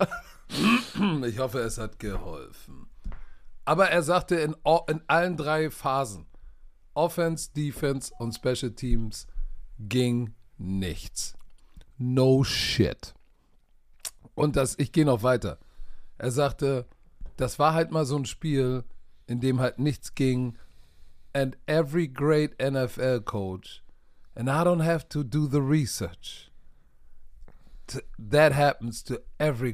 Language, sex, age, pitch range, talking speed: German, male, 50-69, 105-155 Hz, 120 wpm